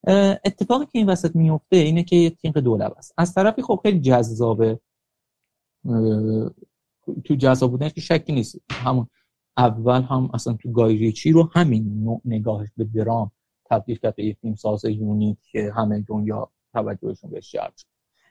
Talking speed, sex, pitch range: 145 wpm, male, 115-165 Hz